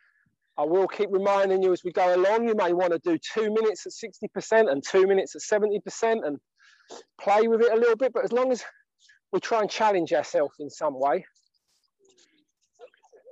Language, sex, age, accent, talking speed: English, male, 40-59, British, 190 wpm